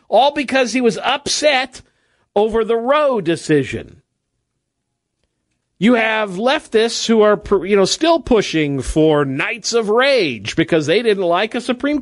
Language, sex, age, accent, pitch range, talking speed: English, male, 50-69, American, 155-235 Hz, 140 wpm